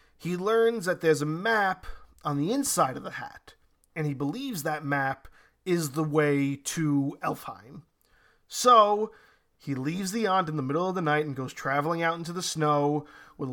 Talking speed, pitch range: 180 wpm, 150-200 Hz